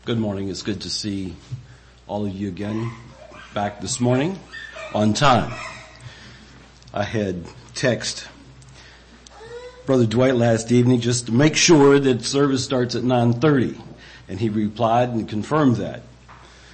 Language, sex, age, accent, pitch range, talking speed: English, male, 50-69, American, 100-125 Hz, 135 wpm